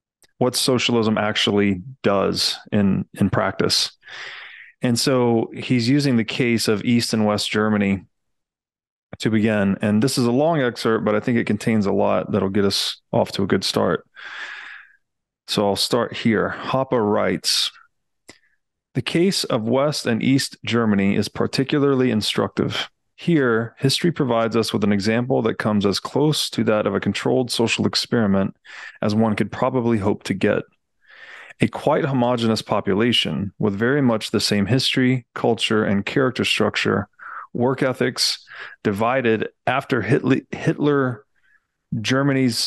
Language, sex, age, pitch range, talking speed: English, male, 20-39, 105-130 Hz, 145 wpm